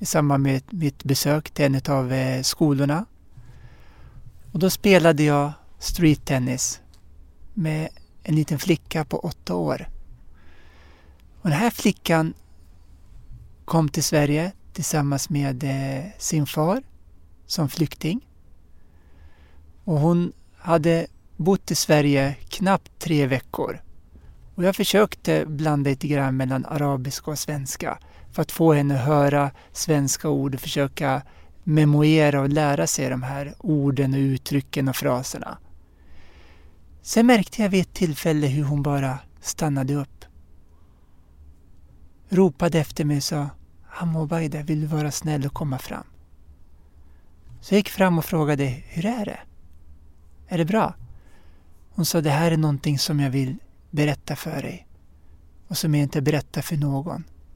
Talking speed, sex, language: 130 wpm, male, English